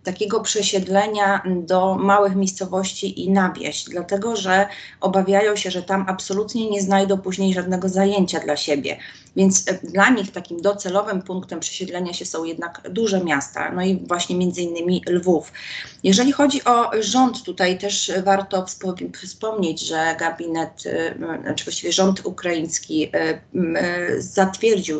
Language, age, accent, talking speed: Polish, 30-49, native, 130 wpm